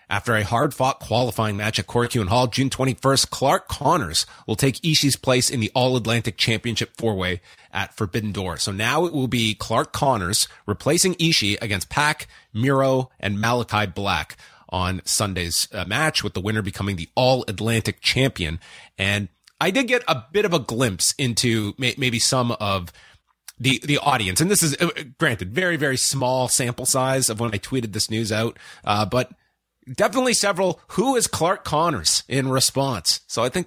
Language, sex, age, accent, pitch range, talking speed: English, male, 30-49, American, 110-140 Hz, 170 wpm